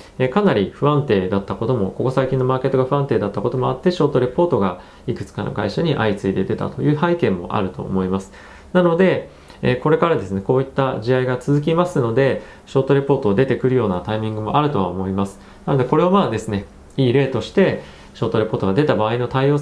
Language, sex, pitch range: Japanese, male, 100-150 Hz